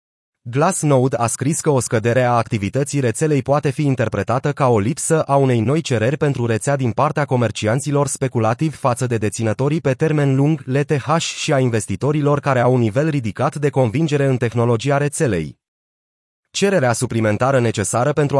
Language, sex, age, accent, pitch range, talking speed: Romanian, male, 30-49, native, 120-150 Hz, 160 wpm